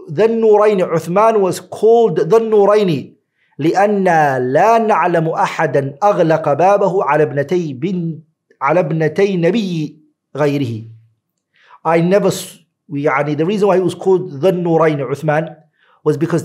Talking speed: 100 wpm